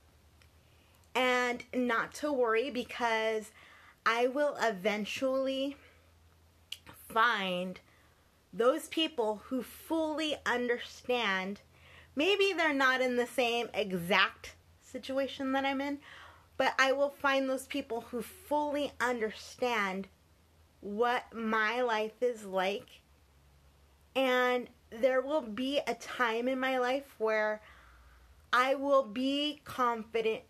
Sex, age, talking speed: female, 30-49, 105 wpm